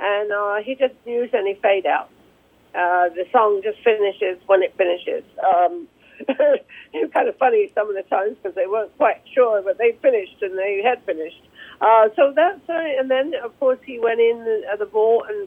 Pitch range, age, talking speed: 215-305 Hz, 60-79, 215 wpm